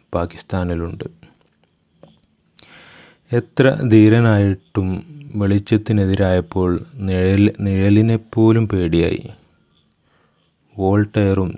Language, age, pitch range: Malayalam, 30-49, 85-100 Hz